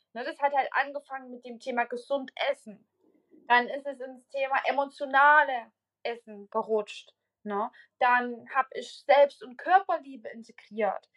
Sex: female